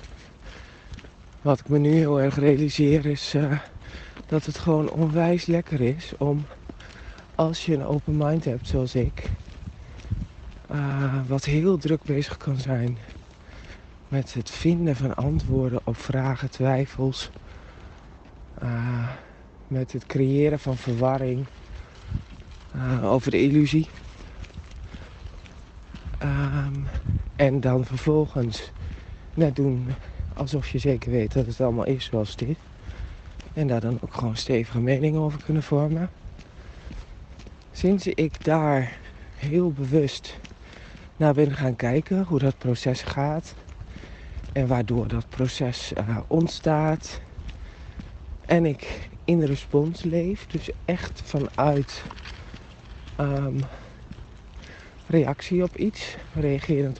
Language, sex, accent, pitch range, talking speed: Dutch, male, Dutch, 95-145 Hz, 110 wpm